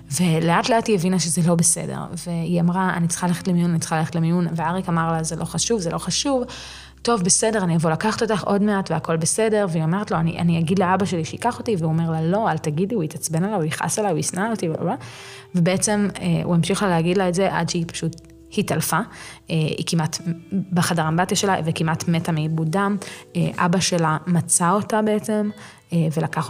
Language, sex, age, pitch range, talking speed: Hebrew, female, 20-39, 160-190 Hz, 190 wpm